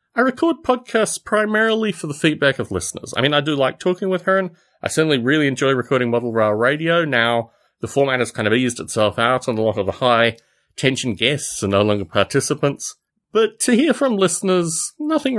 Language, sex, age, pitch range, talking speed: English, male, 30-49, 115-185 Hz, 205 wpm